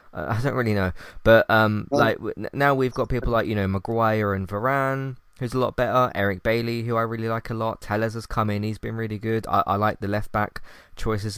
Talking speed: 230 wpm